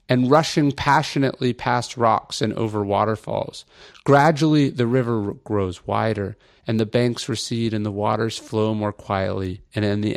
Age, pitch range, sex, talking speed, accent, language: 40-59, 110-135 Hz, male, 155 wpm, American, English